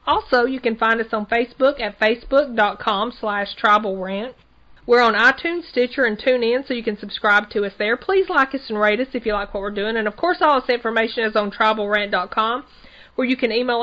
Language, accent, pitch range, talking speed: English, American, 205-245 Hz, 215 wpm